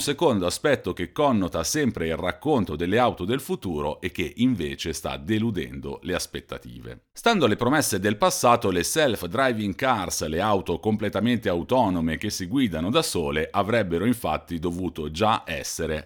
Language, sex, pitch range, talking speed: Italian, male, 85-120 Hz, 150 wpm